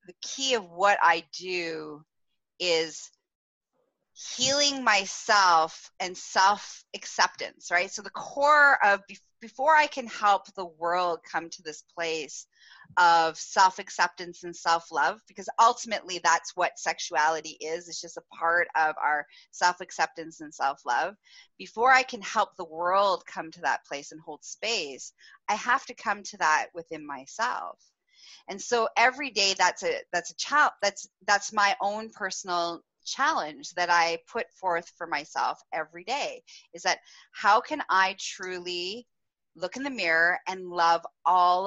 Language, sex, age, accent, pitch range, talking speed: English, female, 30-49, American, 165-205 Hz, 145 wpm